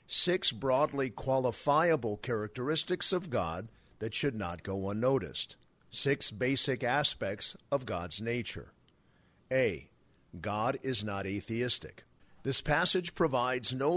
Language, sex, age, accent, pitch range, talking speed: English, male, 50-69, American, 110-140 Hz, 110 wpm